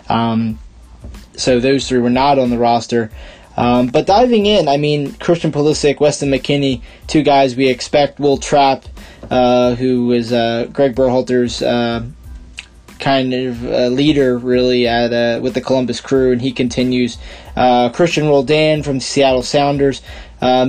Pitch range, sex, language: 120-140 Hz, male, English